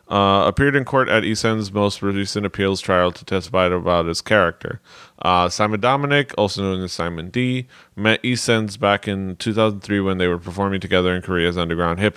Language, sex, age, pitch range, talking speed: English, male, 30-49, 90-110 Hz, 185 wpm